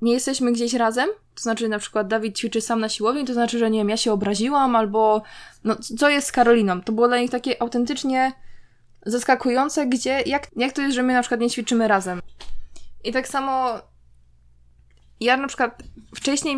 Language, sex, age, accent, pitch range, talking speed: Polish, female, 20-39, native, 195-240 Hz, 190 wpm